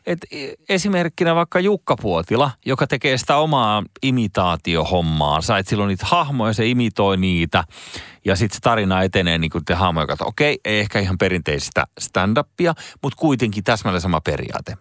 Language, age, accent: Finnish, 30-49, native